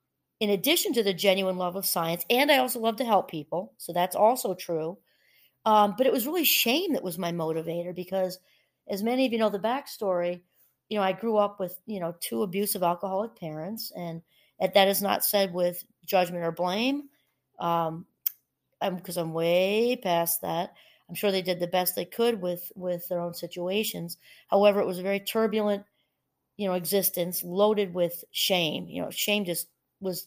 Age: 40-59